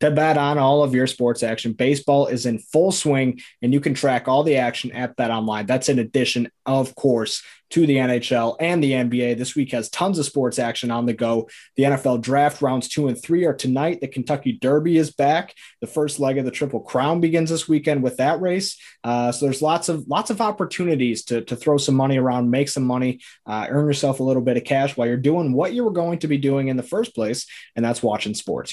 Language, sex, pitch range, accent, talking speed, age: English, male, 125-155 Hz, American, 235 wpm, 20-39